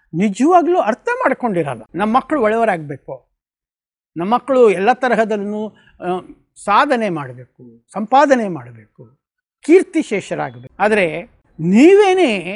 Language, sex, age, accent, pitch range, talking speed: Kannada, male, 50-69, native, 170-235 Hz, 80 wpm